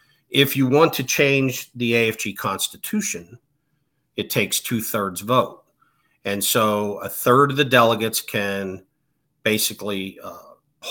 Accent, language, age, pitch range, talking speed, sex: American, English, 50-69, 100-115 Hz, 120 wpm, male